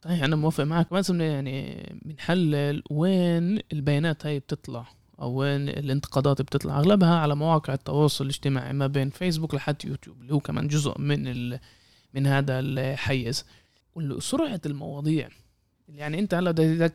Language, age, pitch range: Arabic, 20-39, 140-175 Hz